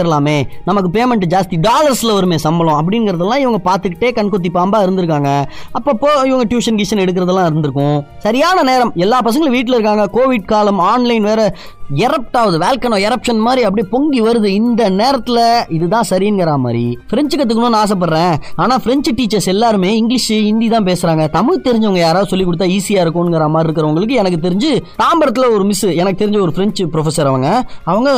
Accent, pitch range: native, 180-240 Hz